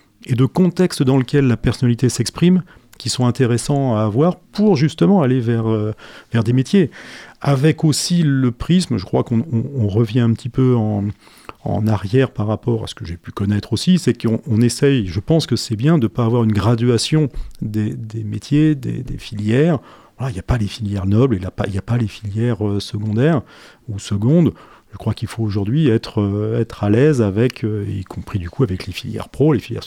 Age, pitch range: 40-59, 105-130 Hz